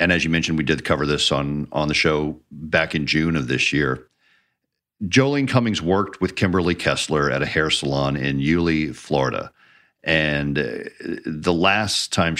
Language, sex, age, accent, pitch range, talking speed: English, male, 50-69, American, 70-85 Hz, 170 wpm